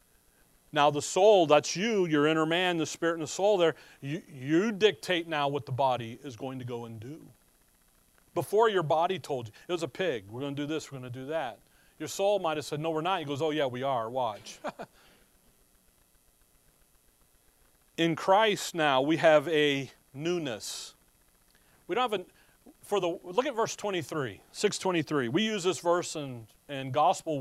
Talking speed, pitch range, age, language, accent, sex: 190 wpm, 135-195 Hz, 40-59, English, American, male